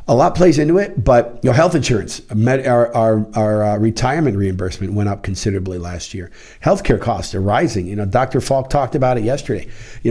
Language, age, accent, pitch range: English, 50-69, American, 110-135 Hz